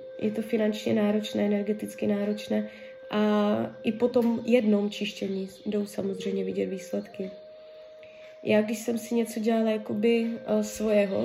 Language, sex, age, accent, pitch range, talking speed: Czech, female, 20-39, native, 195-260 Hz, 130 wpm